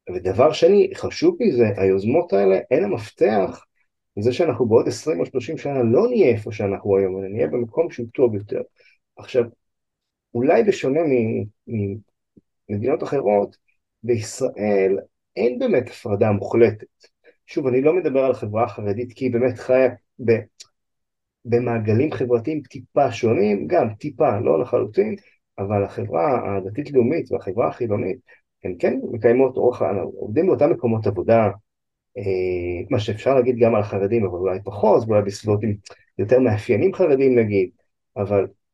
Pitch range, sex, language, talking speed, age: 100-125 Hz, male, Hebrew, 135 wpm, 30-49